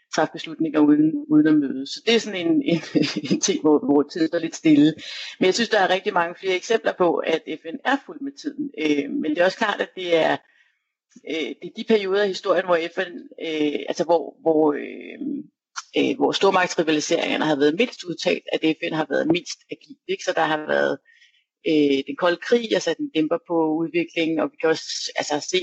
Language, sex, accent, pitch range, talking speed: Danish, female, native, 160-240 Hz, 215 wpm